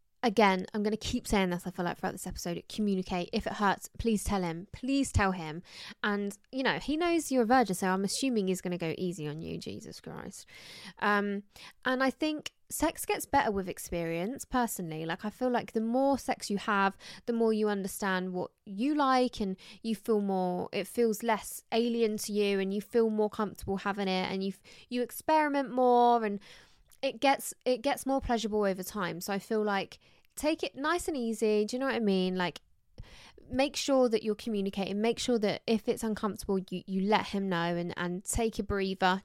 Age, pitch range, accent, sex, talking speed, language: 20-39, 195-245 Hz, British, female, 210 wpm, English